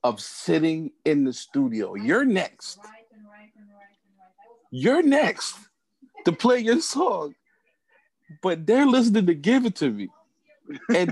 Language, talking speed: English, 120 wpm